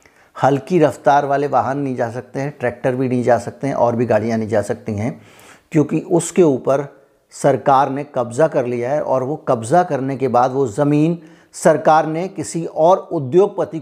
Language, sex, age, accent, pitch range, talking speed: Hindi, male, 50-69, native, 130-155 Hz, 185 wpm